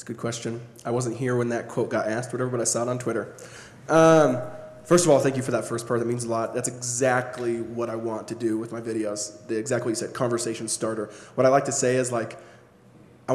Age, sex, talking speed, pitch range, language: 20-39, male, 255 wpm, 115-125 Hz, English